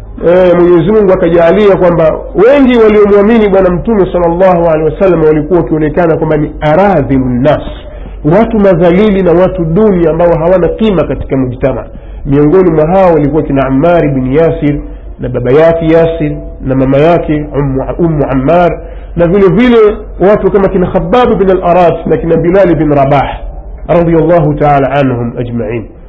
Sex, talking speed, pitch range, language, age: male, 110 wpm, 145-195 Hz, Swahili, 50-69